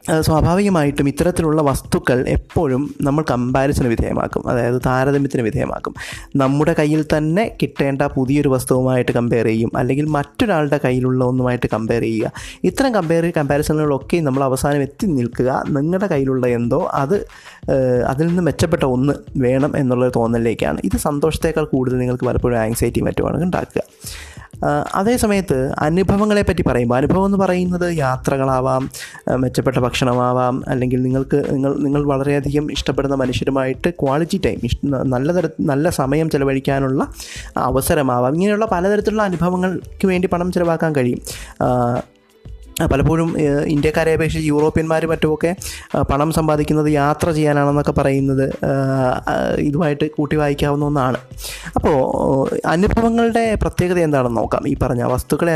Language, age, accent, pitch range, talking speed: Malayalam, 20-39, native, 130-160 Hz, 110 wpm